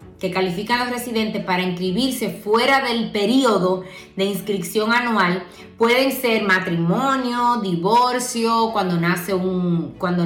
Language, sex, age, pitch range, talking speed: English, female, 20-39, 185-240 Hz, 115 wpm